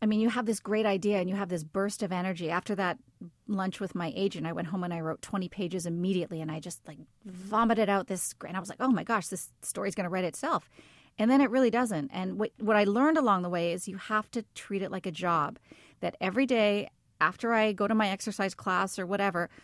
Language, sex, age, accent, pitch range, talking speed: English, female, 30-49, American, 175-210 Hz, 255 wpm